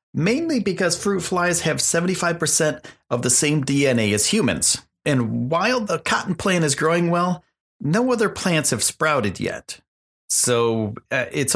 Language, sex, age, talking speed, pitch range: English, male, 40-59, 145 wpm, 115-160 Hz